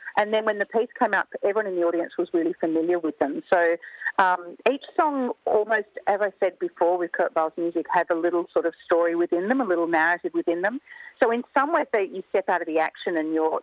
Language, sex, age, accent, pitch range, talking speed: English, female, 40-59, Australian, 170-235 Hz, 240 wpm